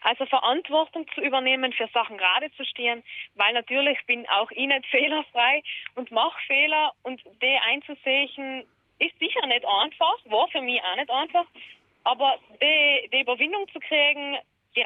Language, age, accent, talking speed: German, 20-39, German, 160 wpm